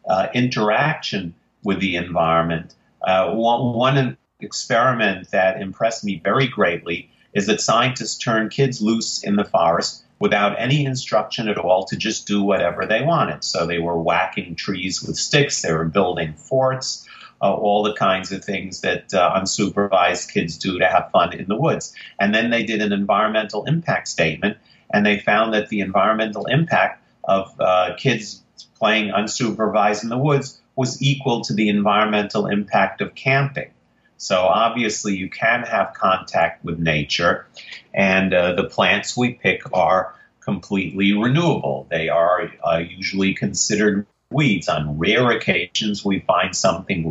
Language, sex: English, male